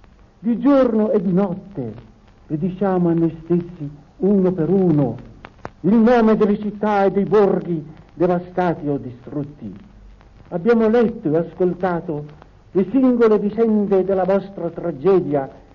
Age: 60-79